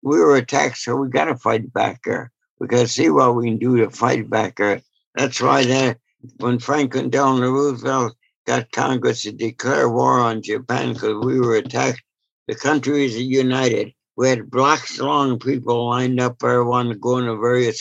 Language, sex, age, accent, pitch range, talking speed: English, male, 60-79, American, 115-135 Hz, 190 wpm